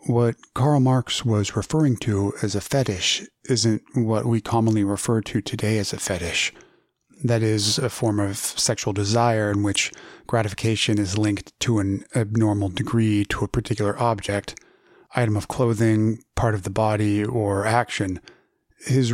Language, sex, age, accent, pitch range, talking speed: English, male, 30-49, American, 105-125 Hz, 155 wpm